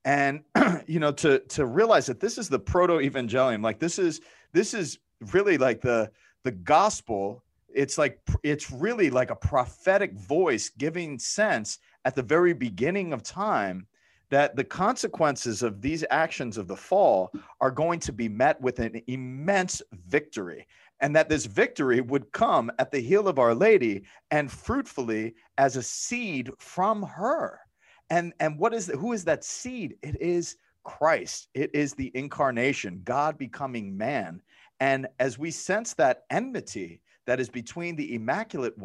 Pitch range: 125-180 Hz